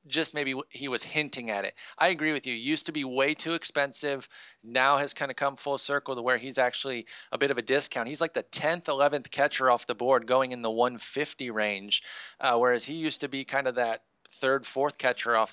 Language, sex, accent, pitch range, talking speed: English, male, American, 120-140 Hz, 230 wpm